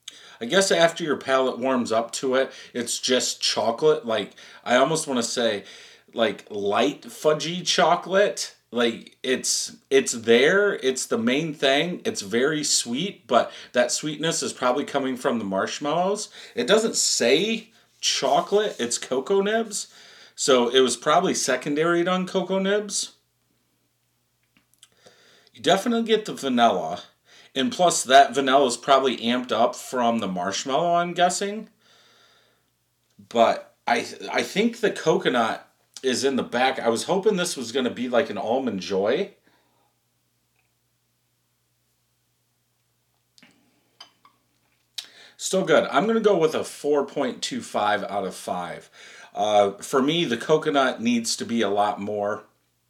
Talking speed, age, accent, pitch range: 135 wpm, 40-59, American, 120-195 Hz